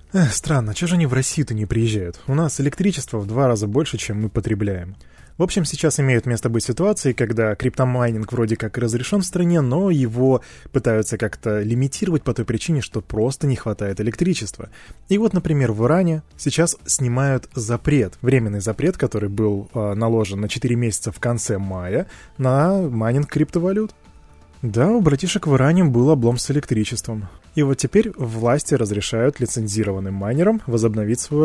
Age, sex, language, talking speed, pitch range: 20-39, male, Russian, 165 wpm, 110-145 Hz